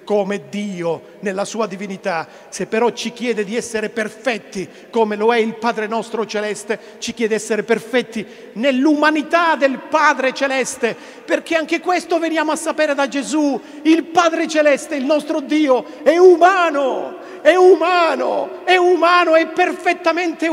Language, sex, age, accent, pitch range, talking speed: Italian, male, 50-69, native, 220-310 Hz, 145 wpm